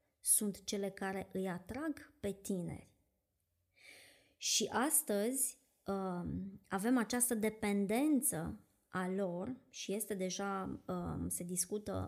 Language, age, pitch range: Romanian, 20-39, 195-230 Hz